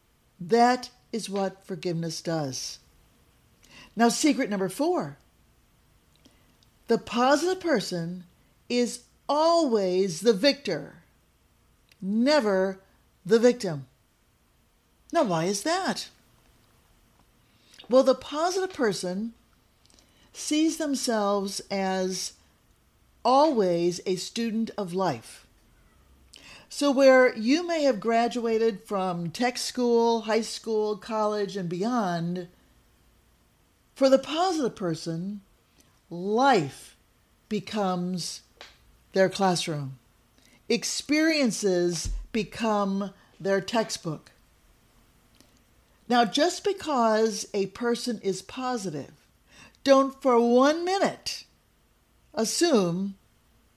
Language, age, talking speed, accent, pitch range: English, 50-69, 80 wpm, American, 185-255 Hz